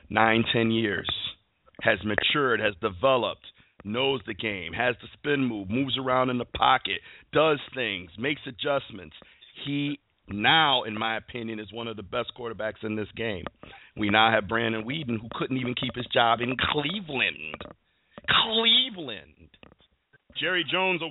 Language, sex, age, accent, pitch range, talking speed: English, male, 40-59, American, 110-155 Hz, 155 wpm